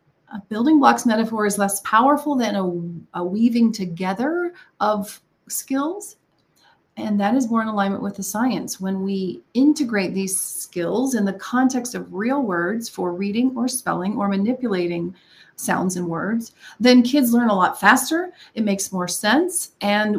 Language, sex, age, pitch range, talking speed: English, female, 30-49, 190-240 Hz, 160 wpm